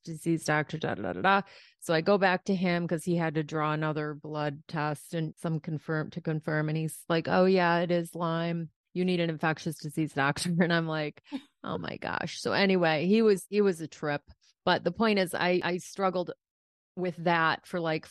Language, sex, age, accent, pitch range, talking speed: English, female, 30-49, American, 155-180 Hz, 210 wpm